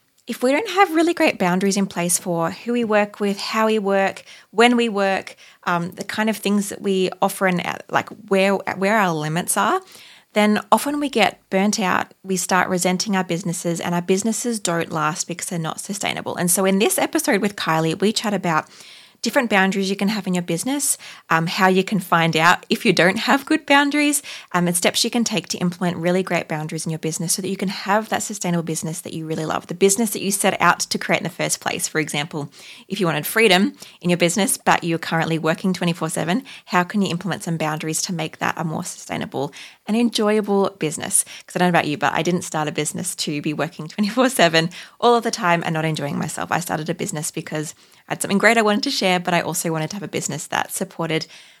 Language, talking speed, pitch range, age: English, 230 wpm, 170-210 Hz, 20-39